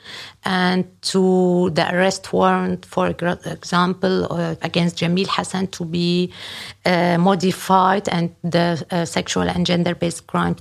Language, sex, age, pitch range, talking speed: German, female, 50-69, 170-190 Hz, 125 wpm